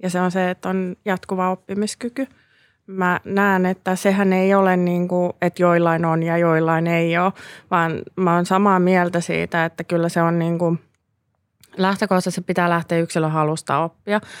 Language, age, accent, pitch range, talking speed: Finnish, 20-39, native, 160-185 Hz, 170 wpm